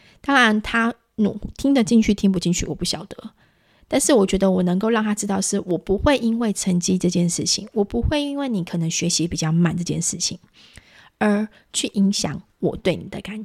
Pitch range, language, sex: 185-240 Hz, Chinese, female